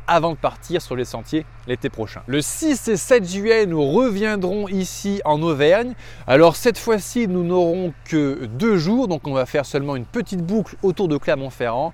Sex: male